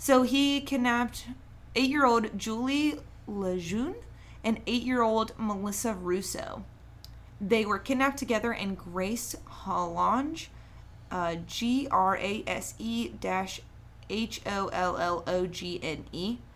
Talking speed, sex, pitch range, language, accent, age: 70 wpm, female, 180-230 Hz, English, American, 20-39